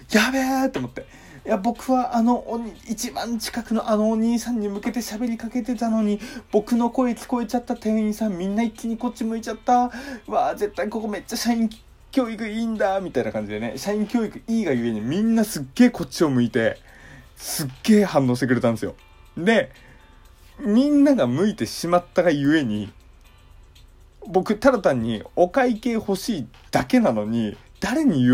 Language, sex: Japanese, male